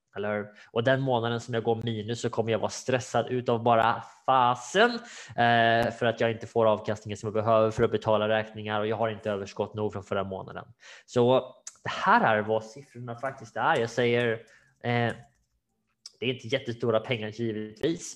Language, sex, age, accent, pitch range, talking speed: Swedish, male, 20-39, Norwegian, 115-135 Hz, 175 wpm